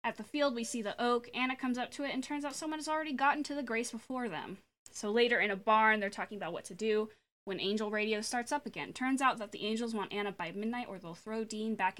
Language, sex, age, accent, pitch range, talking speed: English, female, 10-29, American, 200-245 Hz, 275 wpm